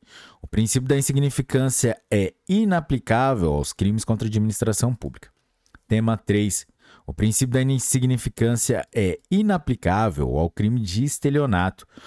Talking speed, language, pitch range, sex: 120 wpm, Portuguese, 100-135 Hz, male